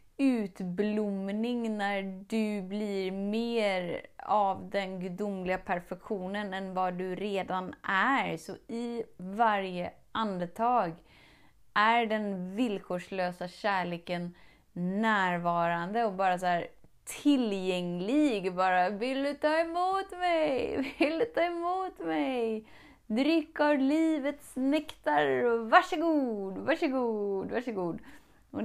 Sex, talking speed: female, 100 wpm